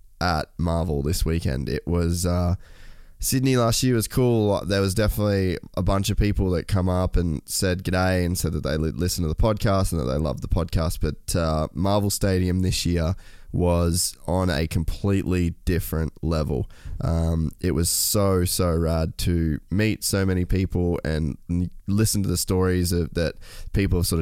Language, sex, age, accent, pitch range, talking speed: English, male, 10-29, Australian, 85-95 Hz, 180 wpm